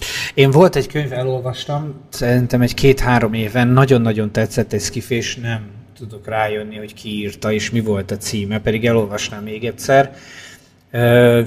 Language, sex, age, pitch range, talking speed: Hungarian, male, 30-49, 105-125 Hz, 150 wpm